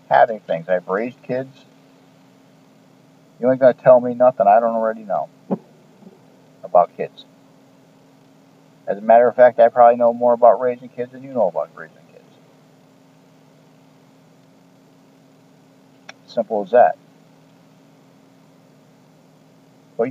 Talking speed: 120 wpm